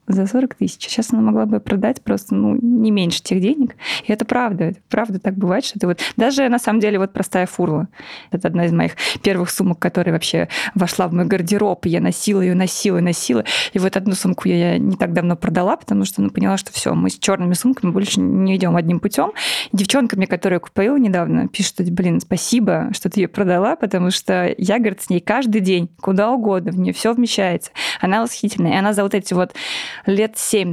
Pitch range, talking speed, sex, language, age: 175-210 Hz, 215 wpm, female, Russian, 20-39